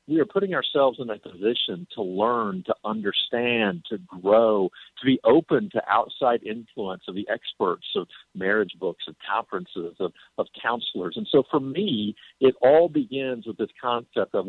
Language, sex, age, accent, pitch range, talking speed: English, male, 50-69, American, 110-150 Hz, 170 wpm